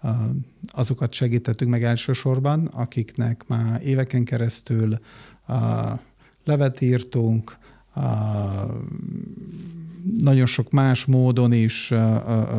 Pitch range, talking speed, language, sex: 110-125 Hz, 70 wpm, Hungarian, male